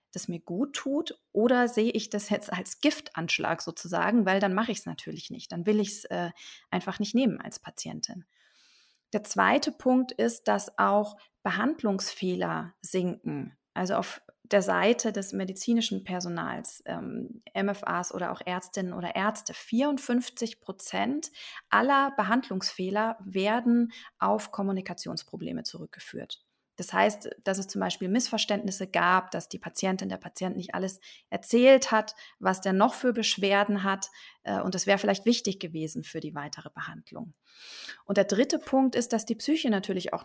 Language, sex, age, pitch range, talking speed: German, female, 40-59, 190-225 Hz, 150 wpm